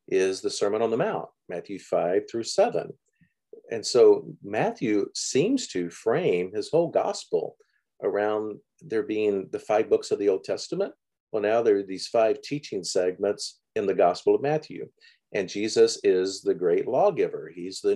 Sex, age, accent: male, 50-69, American